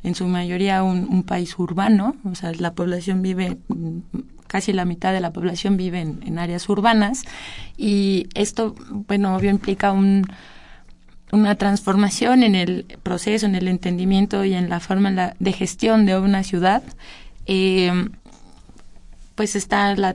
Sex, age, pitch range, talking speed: female, 20-39, 185-205 Hz, 155 wpm